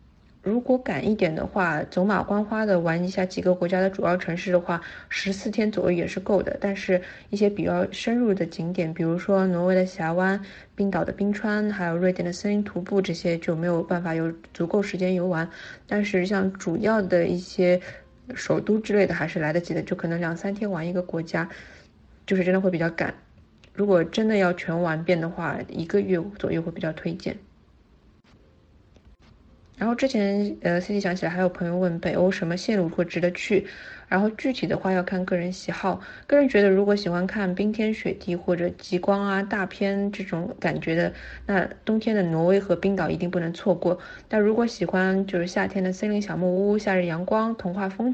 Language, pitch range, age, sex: Chinese, 175-200 Hz, 20-39, female